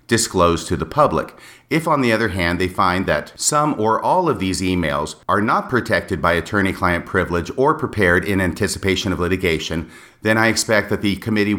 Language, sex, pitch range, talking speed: English, male, 90-115 Hz, 185 wpm